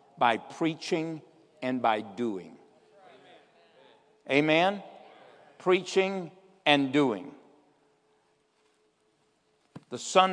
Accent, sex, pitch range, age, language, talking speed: American, male, 140-180 Hz, 60-79, English, 65 wpm